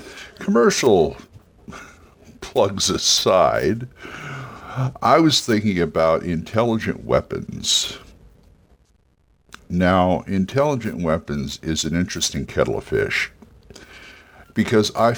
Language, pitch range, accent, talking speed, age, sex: English, 75-105 Hz, American, 80 wpm, 60-79, male